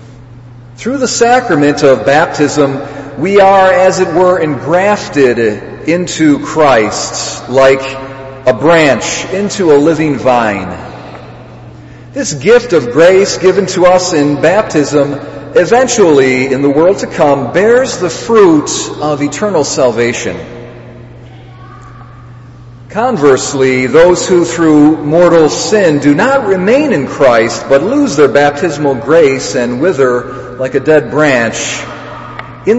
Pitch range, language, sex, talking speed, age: 125-180 Hz, English, male, 115 wpm, 40-59